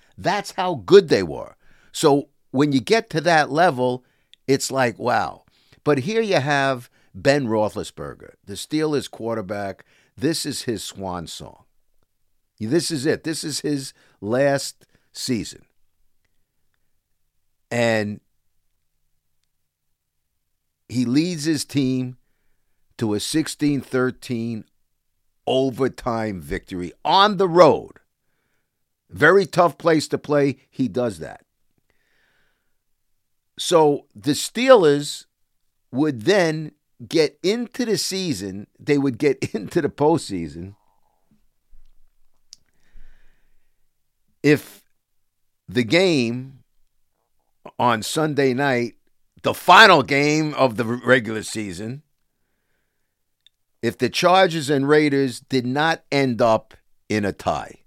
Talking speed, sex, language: 100 wpm, male, English